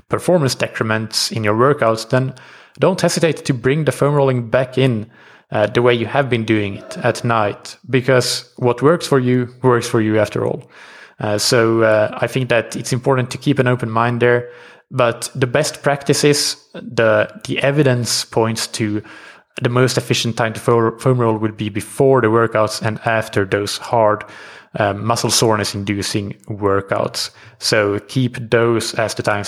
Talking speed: 175 wpm